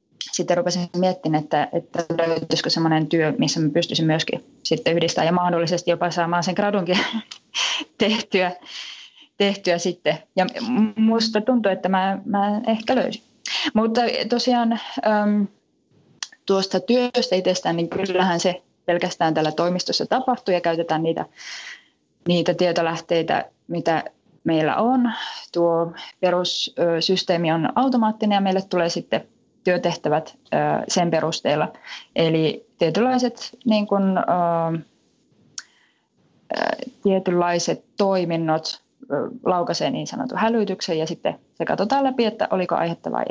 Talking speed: 115 wpm